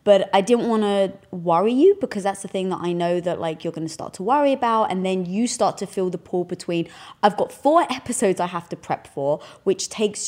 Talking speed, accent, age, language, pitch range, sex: 250 wpm, British, 20-39, English, 165-215 Hz, female